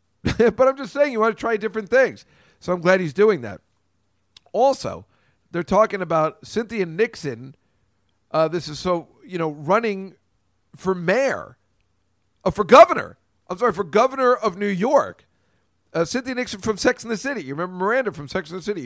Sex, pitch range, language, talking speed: male, 140-195 Hz, English, 180 wpm